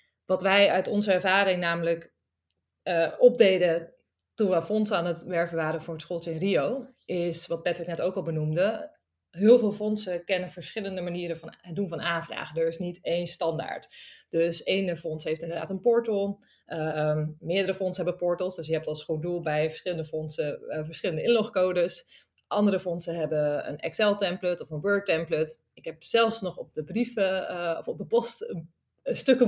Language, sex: Dutch, female